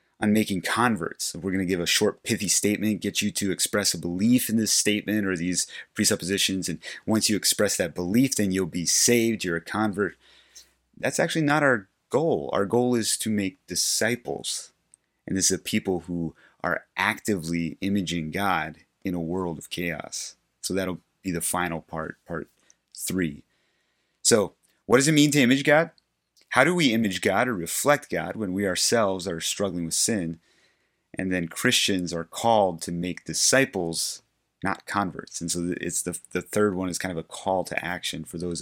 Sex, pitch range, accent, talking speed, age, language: male, 85-110 Hz, American, 185 wpm, 30-49, English